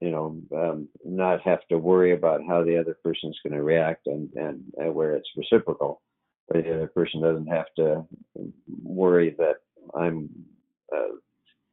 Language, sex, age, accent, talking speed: English, male, 50-69, American, 160 wpm